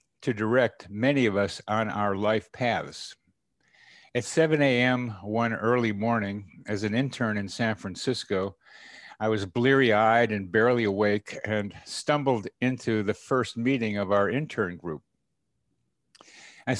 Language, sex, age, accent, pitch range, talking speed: English, male, 60-79, American, 100-125 Hz, 135 wpm